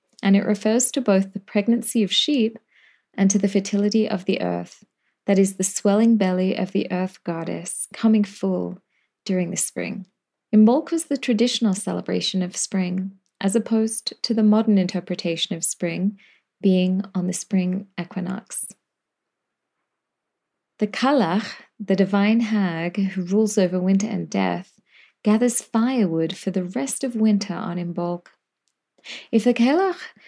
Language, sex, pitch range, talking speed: English, female, 185-220 Hz, 145 wpm